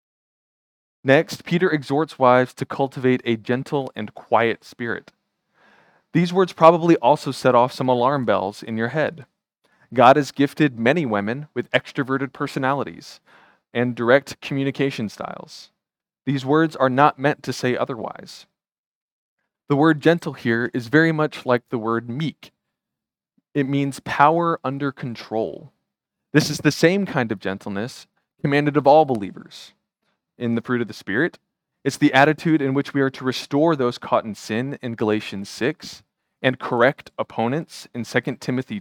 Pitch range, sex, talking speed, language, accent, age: 120-150 Hz, male, 150 wpm, English, American, 20-39